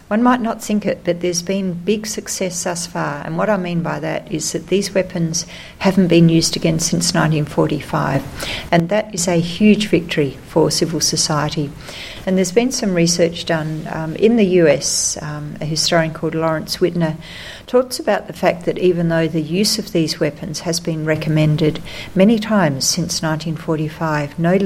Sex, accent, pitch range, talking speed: female, Australian, 160-180 Hz, 175 wpm